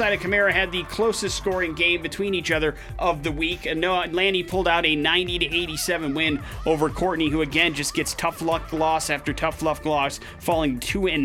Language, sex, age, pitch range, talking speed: English, male, 30-49, 140-175 Hz, 195 wpm